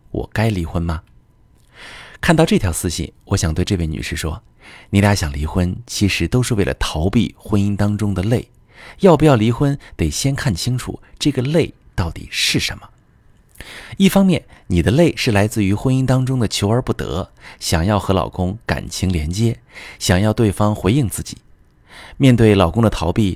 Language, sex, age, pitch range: Chinese, male, 30-49, 85-115 Hz